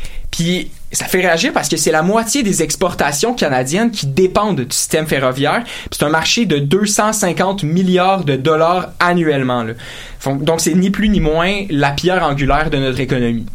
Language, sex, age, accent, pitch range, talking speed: French, male, 20-39, Canadian, 140-190 Hz, 175 wpm